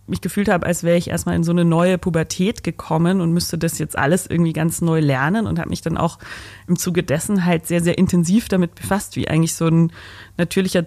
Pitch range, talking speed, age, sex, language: 160-185 Hz, 225 wpm, 30-49, female, German